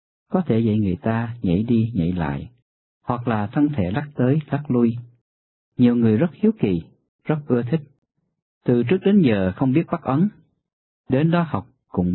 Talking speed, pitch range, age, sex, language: 185 wpm, 95-135 Hz, 50-69, male, Vietnamese